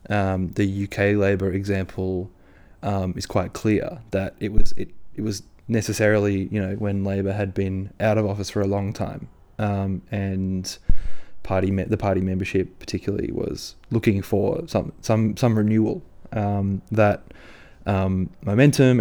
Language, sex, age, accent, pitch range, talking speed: English, male, 20-39, Australian, 95-105 Hz, 150 wpm